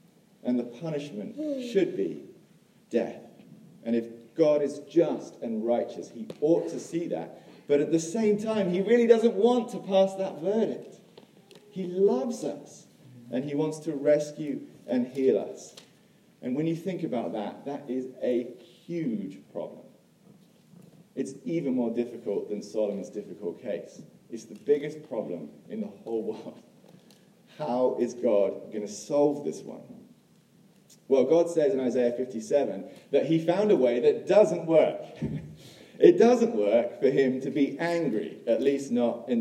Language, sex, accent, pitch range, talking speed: English, male, British, 125-205 Hz, 155 wpm